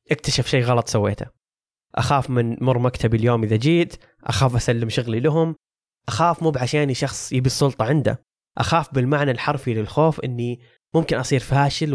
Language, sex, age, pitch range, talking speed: Arabic, male, 20-39, 120-145 Hz, 150 wpm